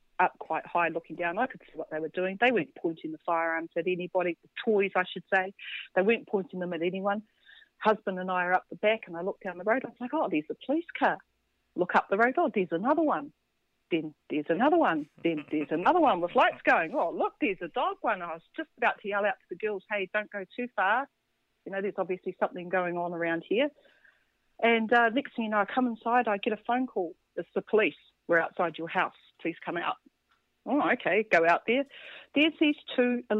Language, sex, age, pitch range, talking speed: English, female, 40-59, 180-240 Hz, 235 wpm